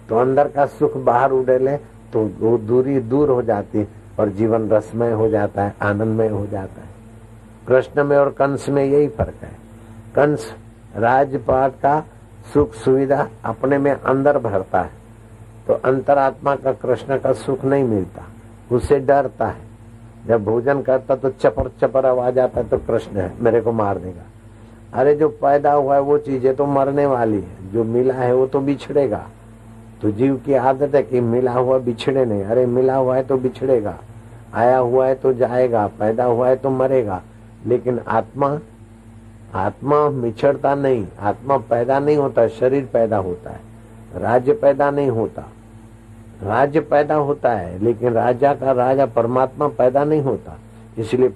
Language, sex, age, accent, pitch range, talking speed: Hindi, male, 60-79, native, 110-135 Hz, 140 wpm